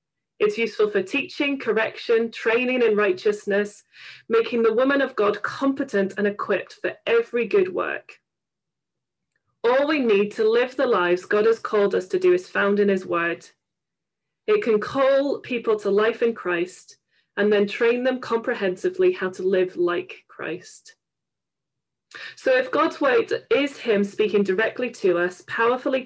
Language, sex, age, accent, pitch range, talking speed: English, female, 30-49, British, 200-275 Hz, 155 wpm